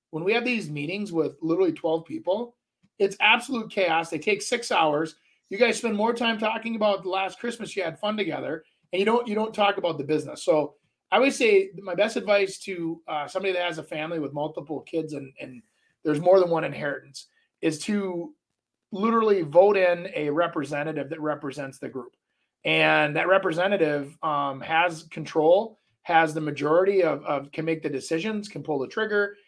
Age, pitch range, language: 30-49, 150-195 Hz, English